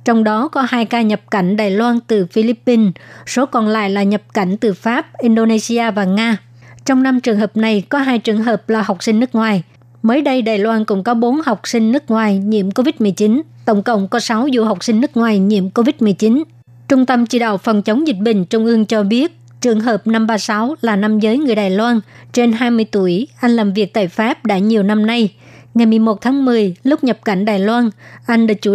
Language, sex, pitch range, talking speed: Vietnamese, male, 205-240 Hz, 220 wpm